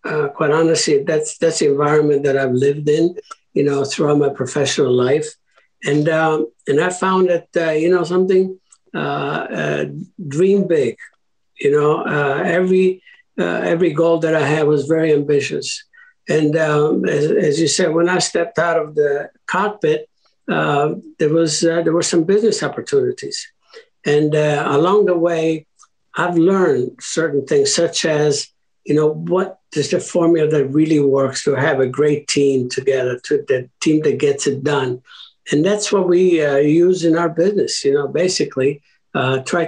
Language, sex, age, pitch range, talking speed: English, male, 60-79, 145-195 Hz, 170 wpm